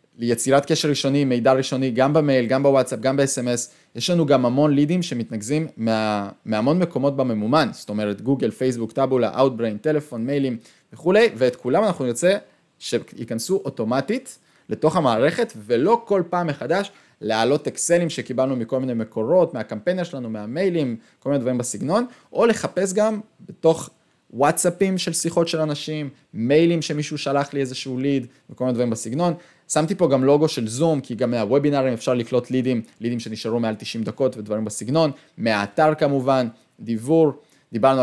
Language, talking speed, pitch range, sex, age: Hebrew, 155 wpm, 120-165 Hz, male, 20-39